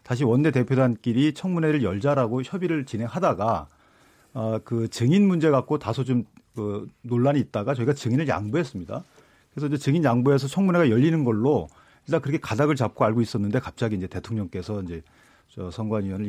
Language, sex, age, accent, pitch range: Korean, male, 40-59, native, 110-155 Hz